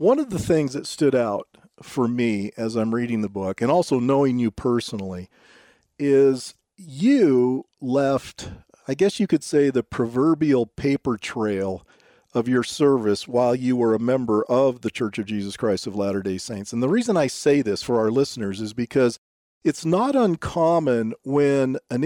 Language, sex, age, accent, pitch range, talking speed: English, male, 40-59, American, 115-160 Hz, 175 wpm